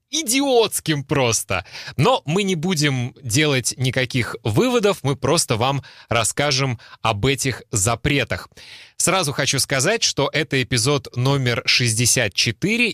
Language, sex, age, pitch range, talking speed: Russian, male, 30-49, 110-145 Hz, 110 wpm